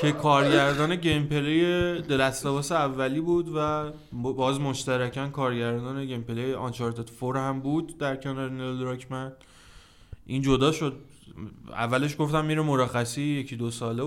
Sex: male